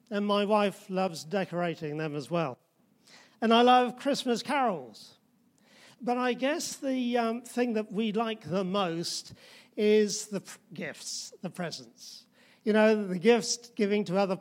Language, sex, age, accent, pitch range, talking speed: English, male, 50-69, British, 195-240 Hz, 155 wpm